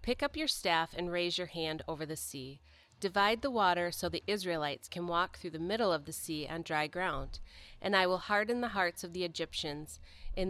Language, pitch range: English, 145-185 Hz